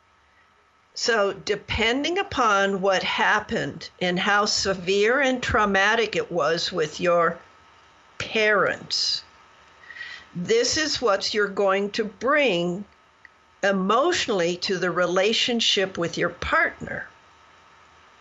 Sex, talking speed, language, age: female, 95 wpm, English, 50-69